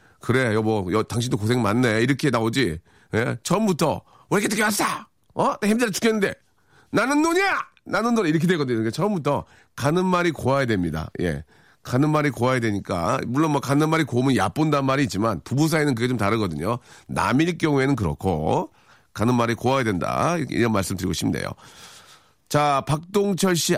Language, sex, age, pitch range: Korean, male, 40-59, 105-155 Hz